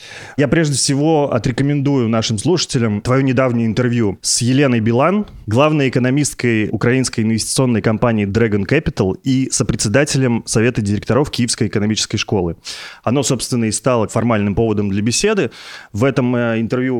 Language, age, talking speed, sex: Russian, 20-39, 130 wpm, male